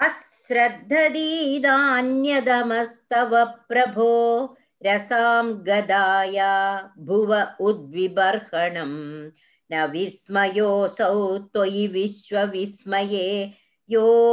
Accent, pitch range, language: native, 200-260 Hz, Tamil